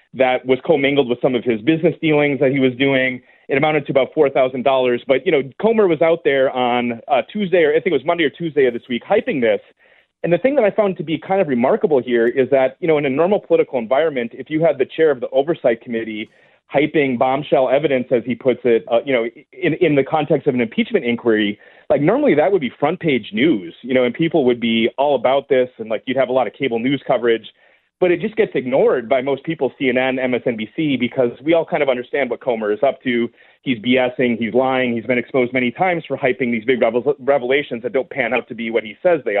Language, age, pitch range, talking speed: English, 30-49, 125-165 Hz, 250 wpm